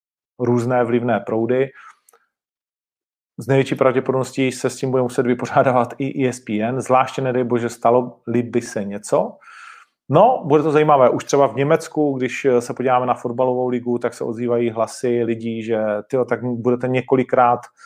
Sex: male